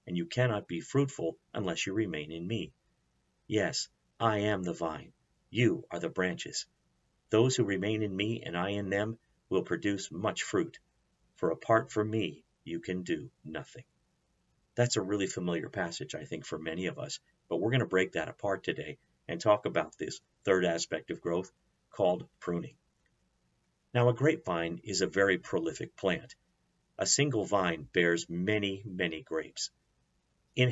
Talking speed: 165 wpm